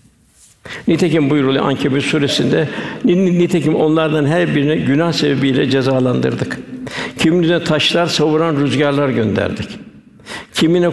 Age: 60-79